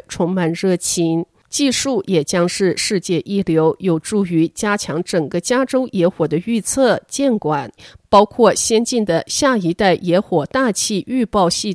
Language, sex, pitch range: Chinese, female, 170-240 Hz